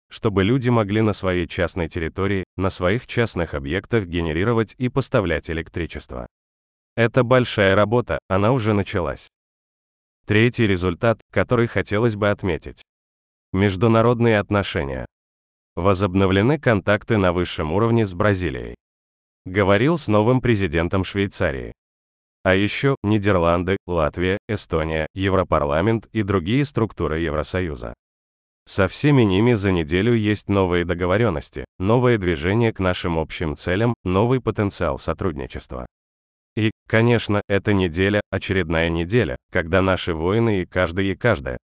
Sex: male